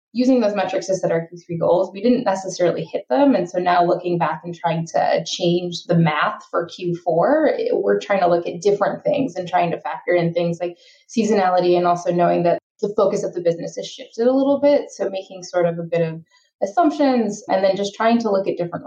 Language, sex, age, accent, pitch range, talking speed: English, female, 20-39, American, 170-210 Hz, 225 wpm